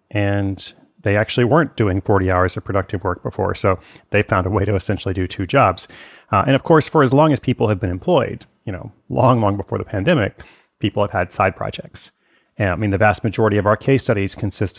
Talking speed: 225 wpm